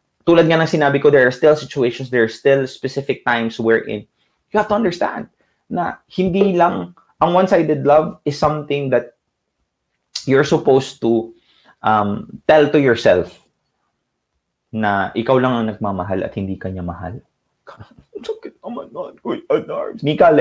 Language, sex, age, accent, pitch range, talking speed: English, male, 20-39, Filipino, 110-165 Hz, 140 wpm